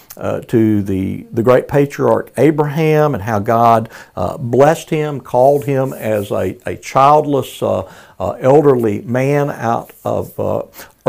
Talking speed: 140 wpm